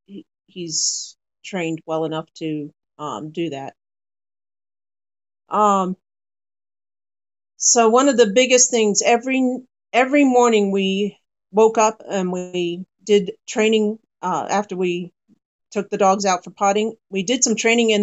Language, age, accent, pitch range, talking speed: English, 50-69, American, 180-220 Hz, 130 wpm